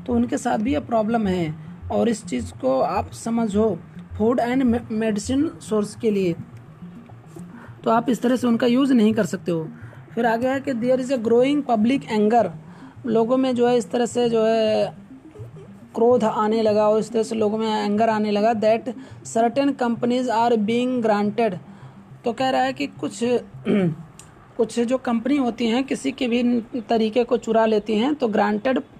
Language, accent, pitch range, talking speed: Hindi, native, 210-245 Hz, 180 wpm